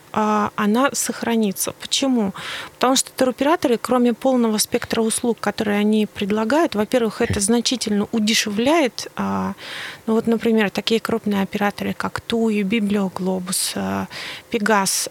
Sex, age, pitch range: female, 30-49, 205-240 Hz